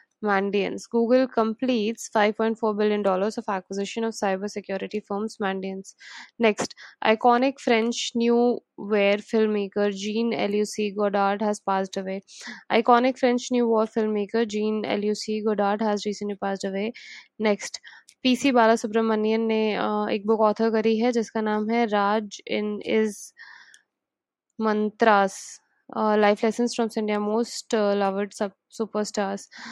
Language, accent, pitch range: English, Indian, 205-230 Hz